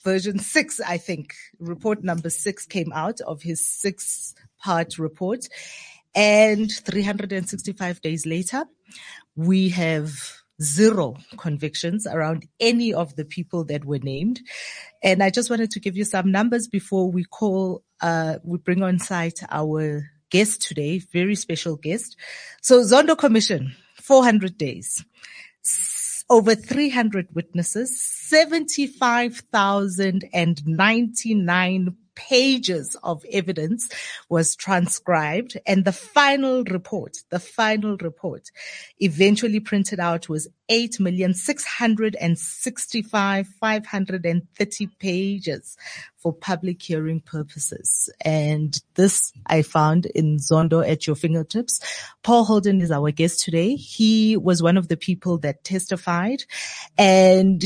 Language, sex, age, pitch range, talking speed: English, female, 30-49, 165-215 Hz, 110 wpm